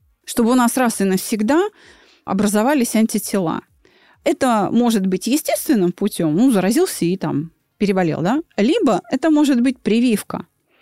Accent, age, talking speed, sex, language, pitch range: native, 30-49, 135 wpm, female, Russian, 200-275 Hz